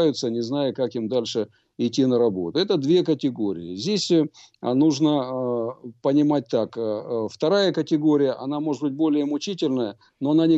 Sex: male